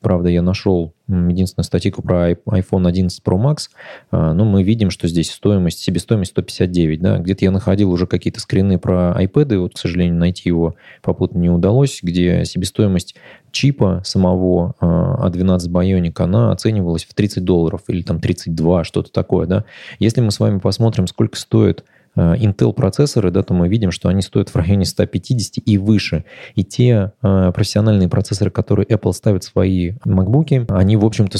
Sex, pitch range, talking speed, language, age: male, 90-105 Hz, 170 wpm, Russian, 20-39